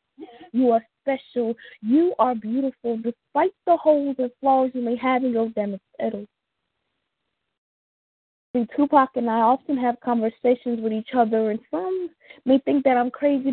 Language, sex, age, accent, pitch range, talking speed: English, female, 20-39, American, 235-310 Hz, 150 wpm